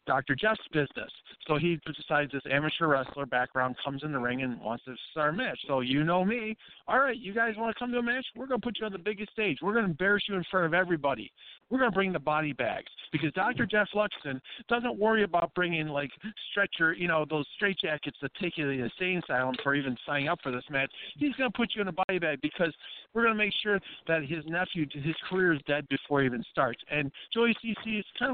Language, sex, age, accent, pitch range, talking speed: English, male, 50-69, American, 145-205 Hz, 250 wpm